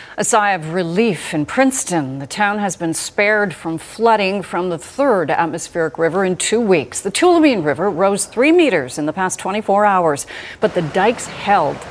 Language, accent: English, American